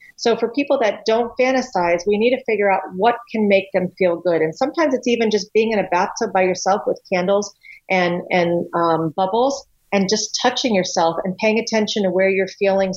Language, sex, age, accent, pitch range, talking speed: English, female, 40-59, American, 190-240 Hz, 210 wpm